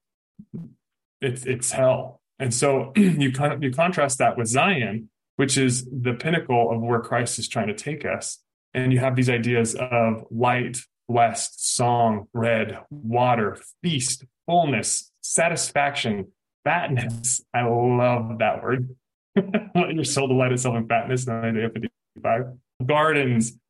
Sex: male